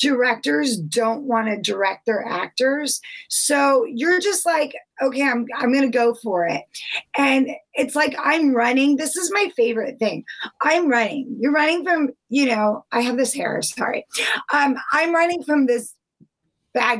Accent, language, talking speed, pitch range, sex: American, English, 165 wpm, 235-300 Hz, female